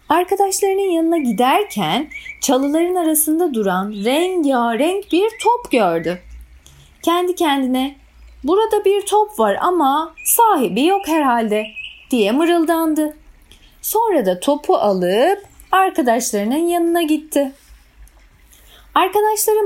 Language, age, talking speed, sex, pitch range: Turkish, 30-49, 90 wpm, female, 260-400 Hz